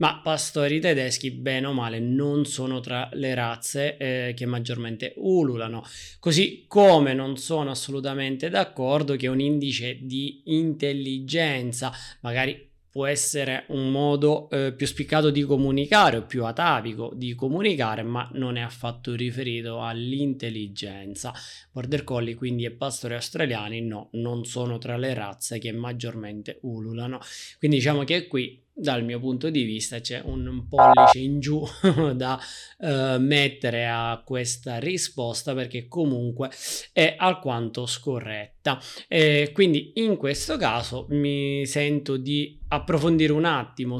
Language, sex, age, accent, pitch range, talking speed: Italian, male, 20-39, native, 120-150 Hz, 135 wpm